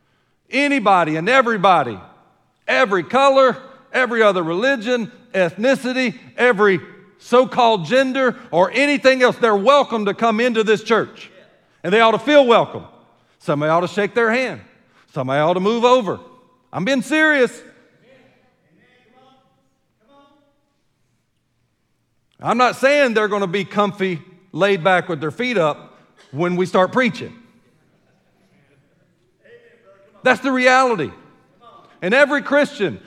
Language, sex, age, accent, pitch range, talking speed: English, male, 50-69, American, 200-255 Hz, 120 wpm